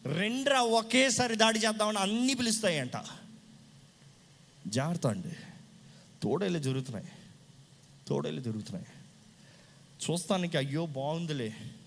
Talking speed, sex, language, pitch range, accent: 80 wpm, male, Telugu, 155-220 Hz, native